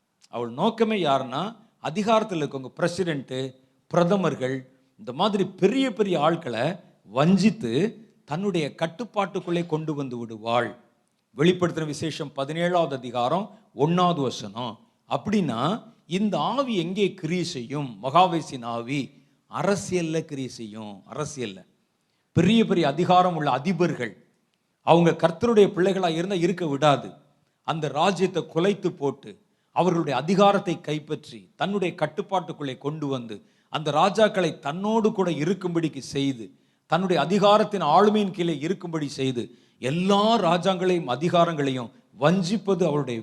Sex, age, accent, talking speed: male, 50-69, native, 100 wpm